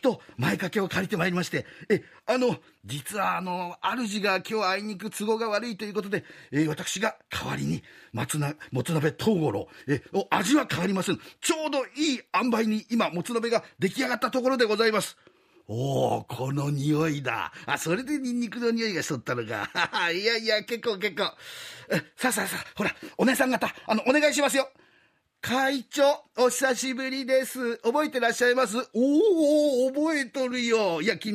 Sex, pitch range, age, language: male, 190-255 Hz, 40-59, Japanese